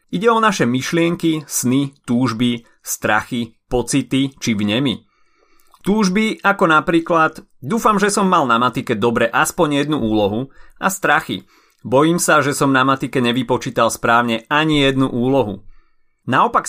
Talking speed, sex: 135 wpm, male